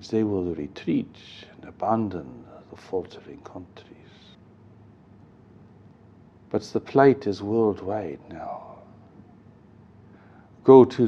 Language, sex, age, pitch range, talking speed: English, male, 60-79, 100-110 Hz, 85 wpm